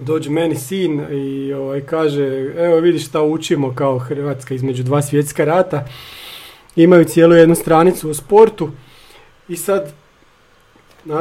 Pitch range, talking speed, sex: 145-185 Hz, 135 wpm, male